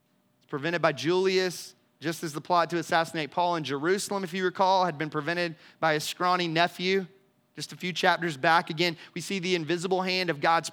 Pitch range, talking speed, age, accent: 155-195 Hz, 195 wpm, 30-49, American